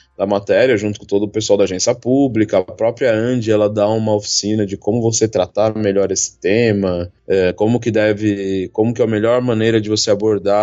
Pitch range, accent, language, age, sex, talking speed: 95-110 Hz, Brazilian, Portuguese, 20-39, male, 205 wpm